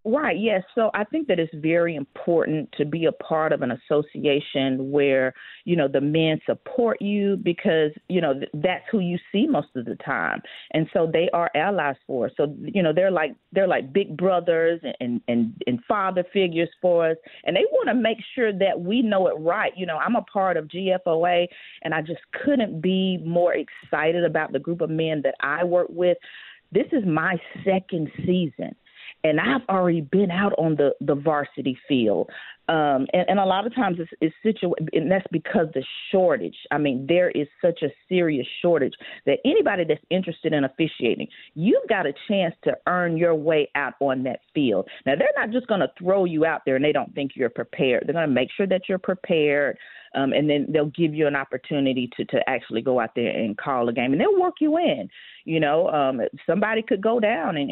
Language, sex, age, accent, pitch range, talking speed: English, female, 40-59, American, 155-195 Hz, 210 wpm